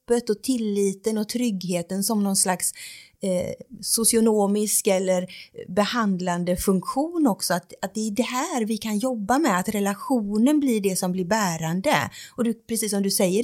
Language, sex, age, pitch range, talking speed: Swedish, female, 30-49, 185-235 Hz, 160 wpm